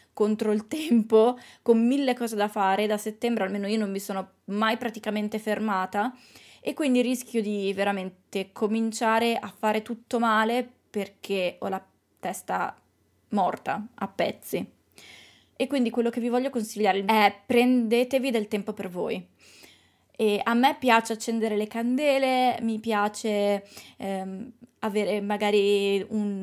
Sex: female